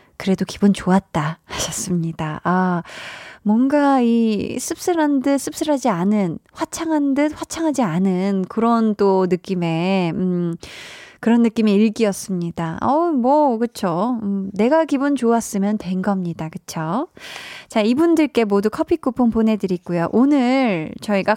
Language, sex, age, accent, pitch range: Korean, female, 20-39, native, 190-250 Hz